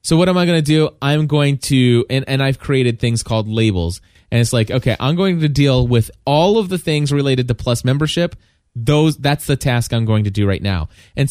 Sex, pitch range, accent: male, 110-145 Hz, American